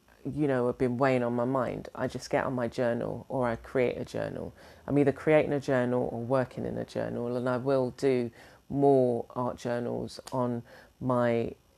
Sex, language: female, English